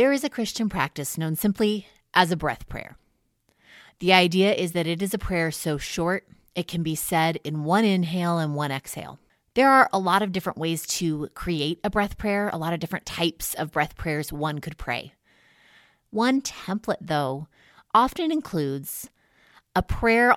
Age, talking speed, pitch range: 30-49, 180 wpm, 145-185 Hz